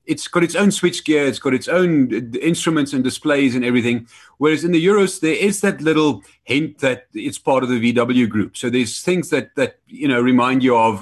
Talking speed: 225 wpm